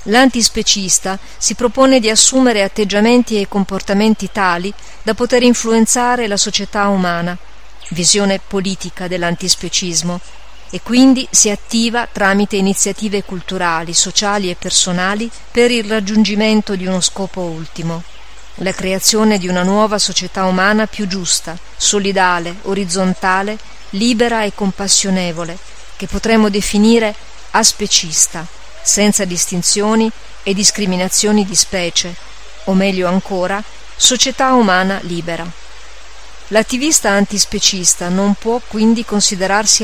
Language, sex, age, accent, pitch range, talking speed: Italian, female, 40-59, native, 185-220 Hz, 105 wpm